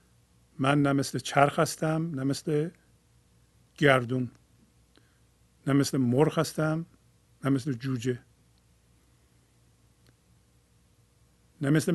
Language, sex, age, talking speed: Persian, male, 50-69, 60 wpm